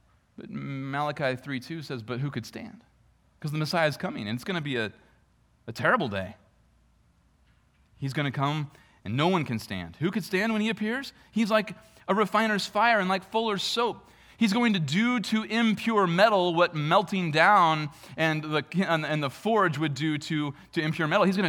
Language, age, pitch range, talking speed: English, 30-49, 115-170 Hz, 195 wpm